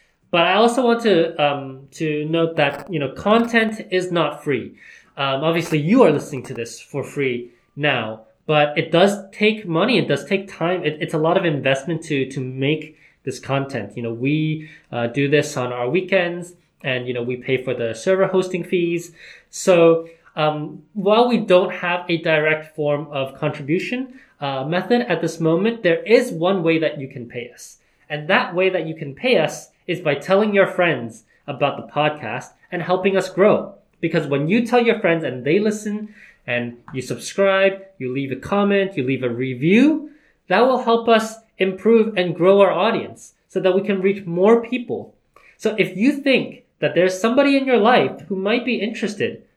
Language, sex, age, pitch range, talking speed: English, male, 20-39, 145-205 Hz, 190 wpm